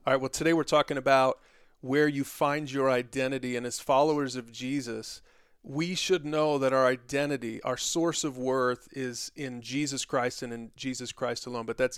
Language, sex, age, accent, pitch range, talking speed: English, male, 40-59, American, 125-145 Hz, 190 wpm